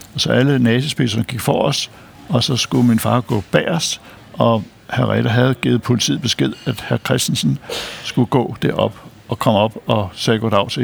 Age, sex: 60-79, male